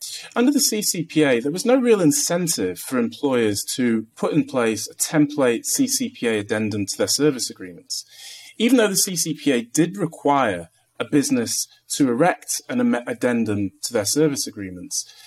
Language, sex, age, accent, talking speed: English, male, 30-49, British, 150 wpm